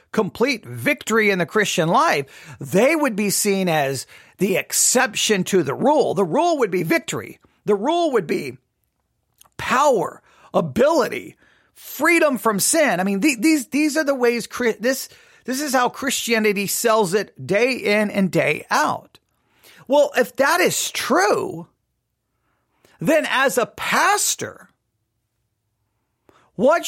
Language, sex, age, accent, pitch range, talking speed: English, male, 40-59, American, 210-290 Hz, 130 wpm